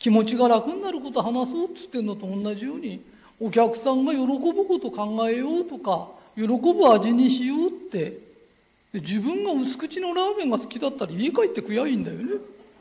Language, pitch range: Japanese, 220-310 Hz